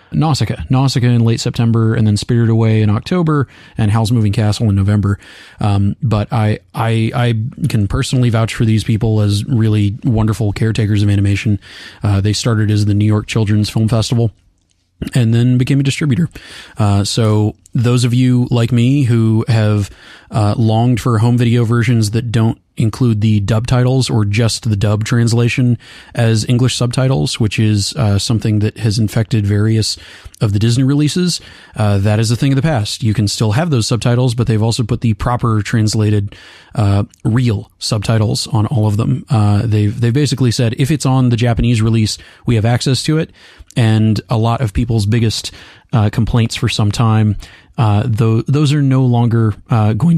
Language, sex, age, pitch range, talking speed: English, male, 30-49, 105-125 Hz, 185 wpm